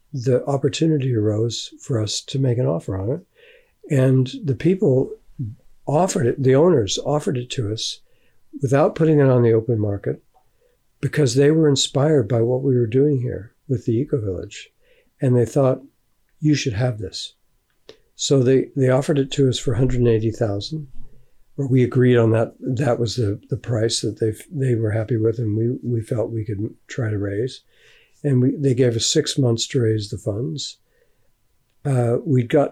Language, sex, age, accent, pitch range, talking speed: English, male, 60-79, American, 115-140 Hz, 185 wpm